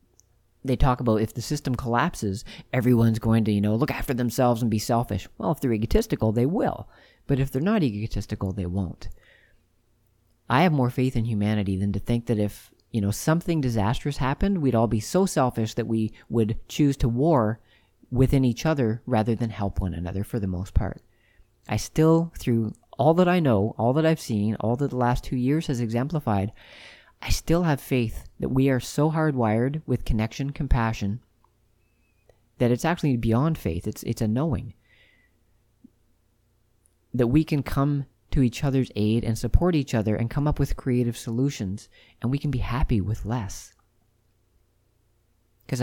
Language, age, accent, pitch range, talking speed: English, 40-59, American, 105-135 Hz, 180 wpm